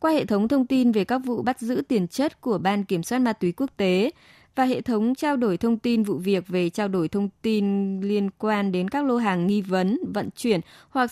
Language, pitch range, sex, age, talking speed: Vietnamese, 185-255 Hz, female, 20-39, 245 wpm